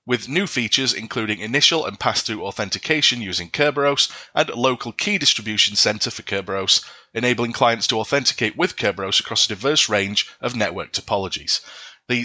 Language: English